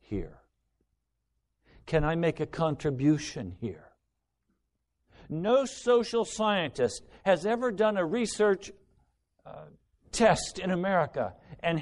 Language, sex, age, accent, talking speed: English, male, 60-79, American, 100 wpm